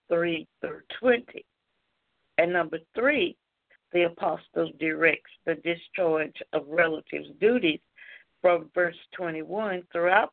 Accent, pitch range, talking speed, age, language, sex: American, 165-220 Hz, 105 wpm, 60-79, English, female